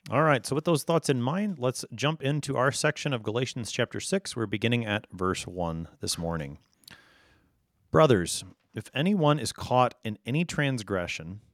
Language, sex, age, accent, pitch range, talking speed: English, male, 40-59, American, 95-145 Hz, 165 wpm